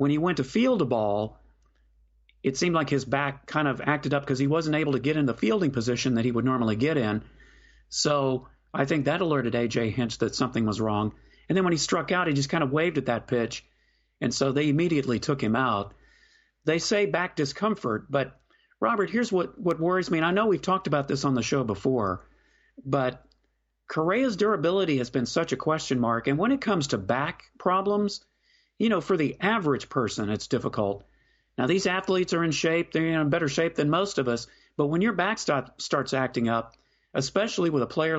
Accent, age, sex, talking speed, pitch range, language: American, 40-59, male, 215 wpm, 130-175 Hz, English